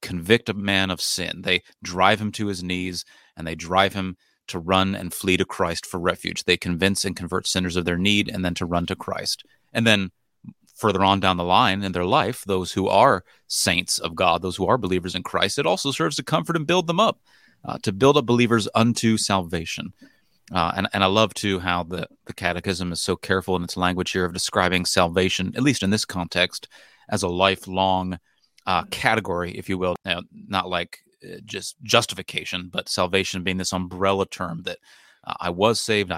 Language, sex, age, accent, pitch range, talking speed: English, male, 30-49, American, 90-100 Hz, 205 wpm